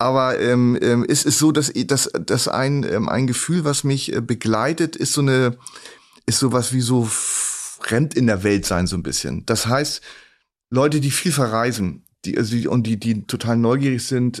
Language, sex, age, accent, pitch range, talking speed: German, male, 30-49, German, 115-135 Hz, 200 wpm